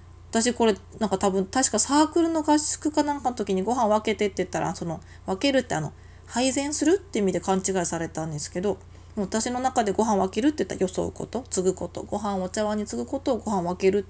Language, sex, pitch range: Japanese, female, 170-220 Hz